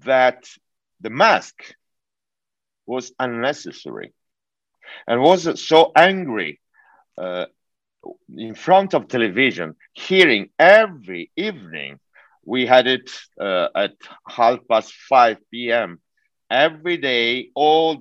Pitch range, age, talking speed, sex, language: 120-155 Hz, 50-69, 95 wpm, male, English